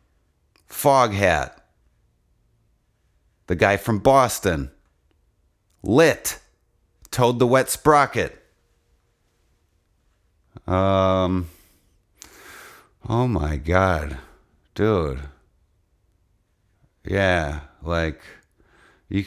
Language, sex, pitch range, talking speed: English, male, 80-110 Hz, 60 wpm